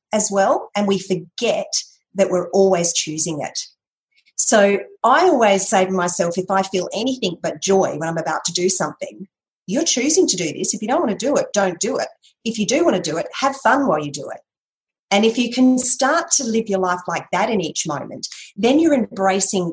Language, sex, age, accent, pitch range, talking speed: English, female, 40-59, Australian, 175-230 Hz, 220 wpm